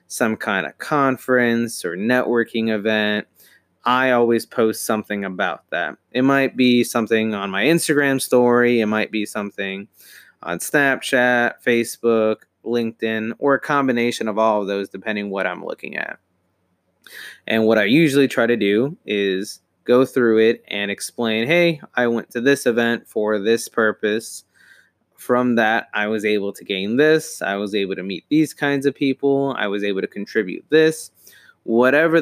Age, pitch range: 20-39, 105-125 Hz